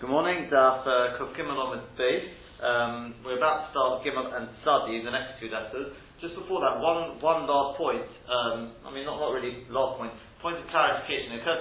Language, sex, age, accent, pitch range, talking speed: English, male, 30-49, British, 120-155 Hz, 180 wpm